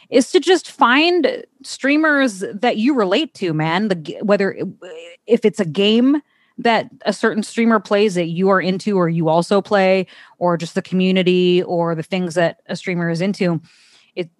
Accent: American